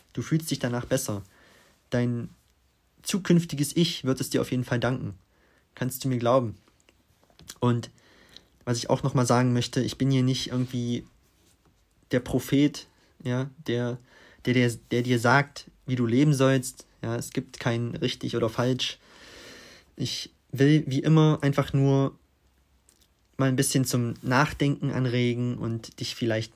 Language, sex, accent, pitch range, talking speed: German, male, German, 110-140 Hz, 140 wpm